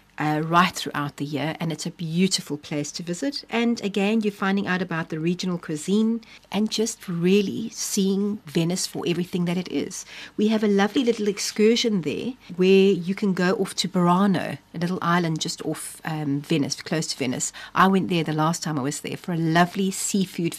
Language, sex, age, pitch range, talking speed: English, female, 40-59, 155-195 Hz, 200 wpm